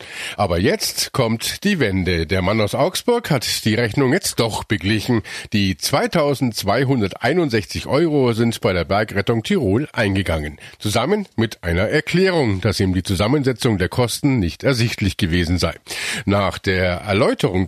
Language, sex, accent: German, male, German